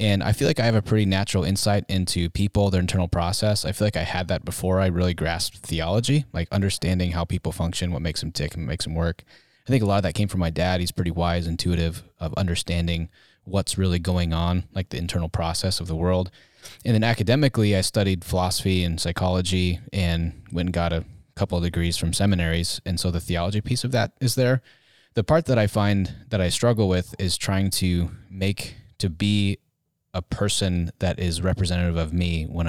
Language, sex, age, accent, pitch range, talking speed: English, male, 20-39, American, 90-110 Hz, 215 wpm